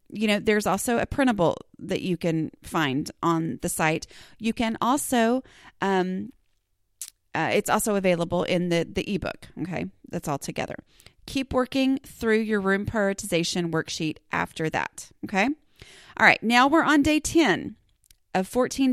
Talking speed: 150 wpm